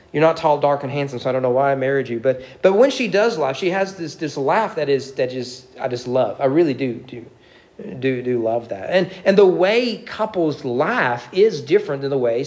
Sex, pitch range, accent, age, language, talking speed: male, 120-170 Hz, American, 40-59, English, 245 wpm